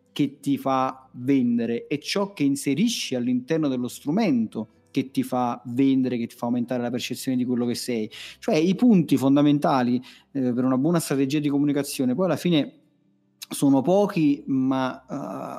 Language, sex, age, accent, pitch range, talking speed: Italian, male, 40-59, native, 130-155 Hz, 165 wpm